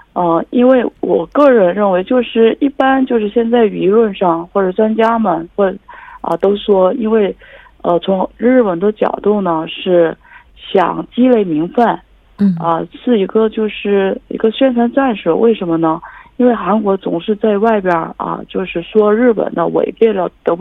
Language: Korean